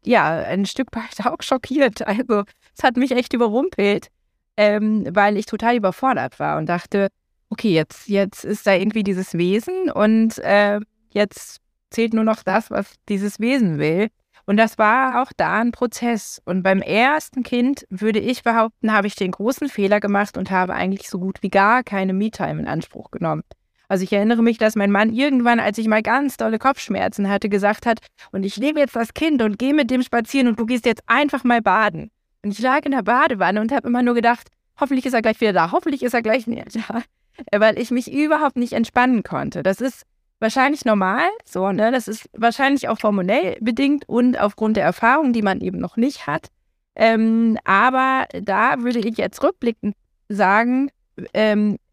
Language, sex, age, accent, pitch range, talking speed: German, female, 20-39, German, 205-250 Hz, 195 wpm